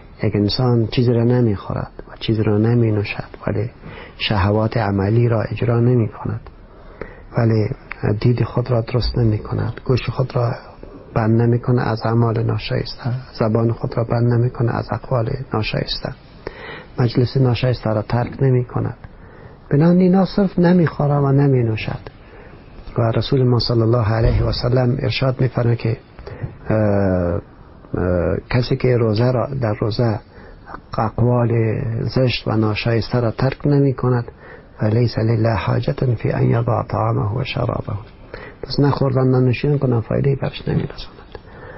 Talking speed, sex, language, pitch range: 125 wpm, male, English, 110-130 Hz